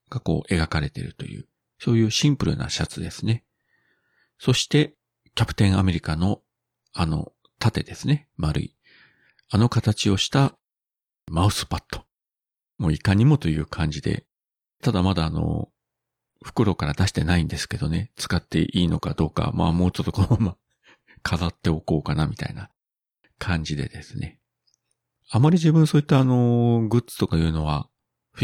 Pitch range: 85-120 Hz